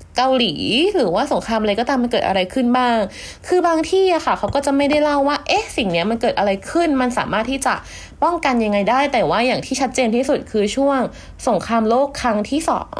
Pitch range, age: 205-285 Hz, 20-39